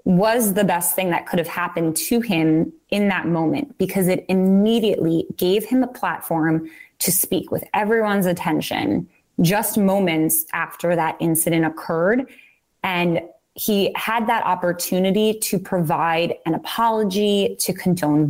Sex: female